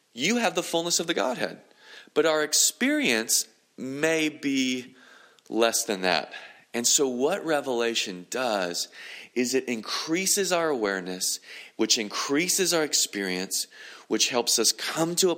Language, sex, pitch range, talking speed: English, male, 100-145 Hz, 135 wpm